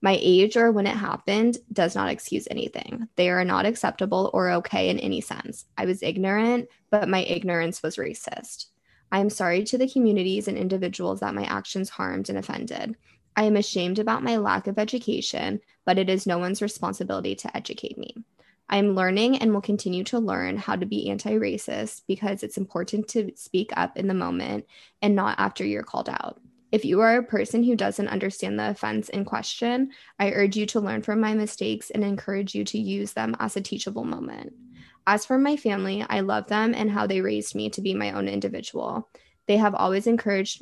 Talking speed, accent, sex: 200 wpm, American, female